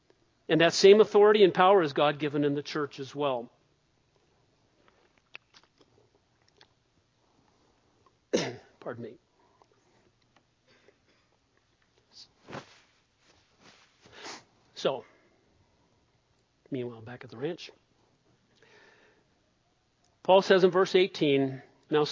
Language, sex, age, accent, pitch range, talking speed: English, male, 50-69, American, 145-175 Hz, 75 wpm